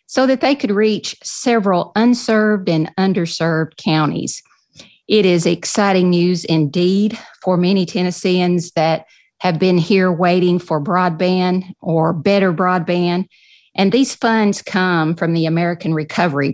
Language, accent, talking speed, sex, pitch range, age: English, American, 130 wpm, female, 160-205 Hz, 50-69